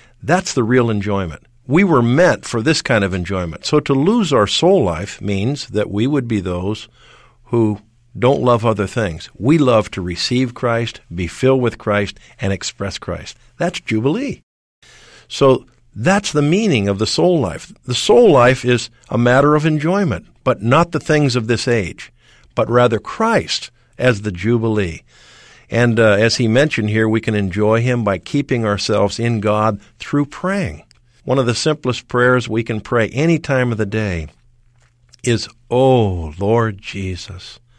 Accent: American